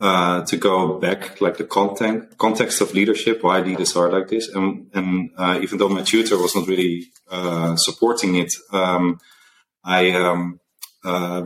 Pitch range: 85-95 Hz